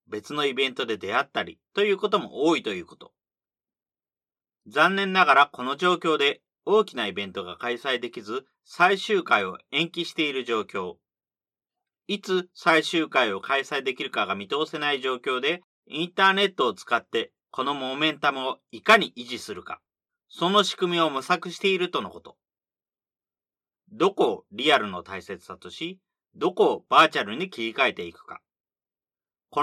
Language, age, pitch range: Japanese, 40-59, 140-200 Hz